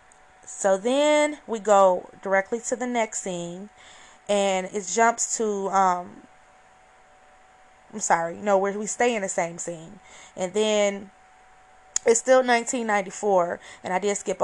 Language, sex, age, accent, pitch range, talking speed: English, female, 20-39, American, 185-235 Hz, 135 wpm